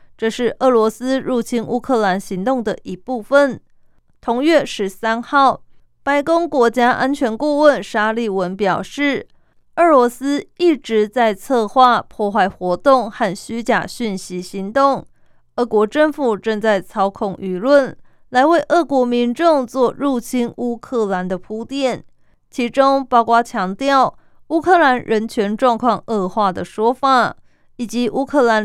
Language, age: Chinese, 20-39